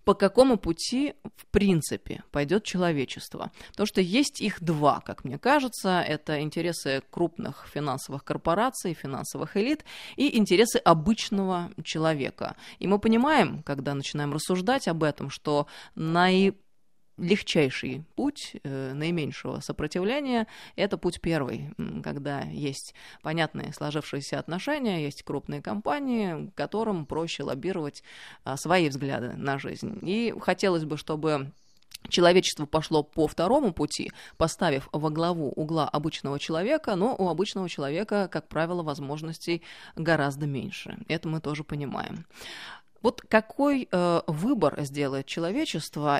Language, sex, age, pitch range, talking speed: Russian, female, 20-39, 150-200 Hz, 120 wpm